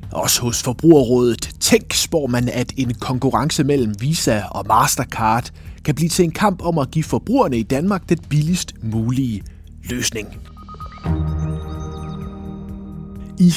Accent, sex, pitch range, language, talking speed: native, male, 110-160 Hz, Danish, 130 wpm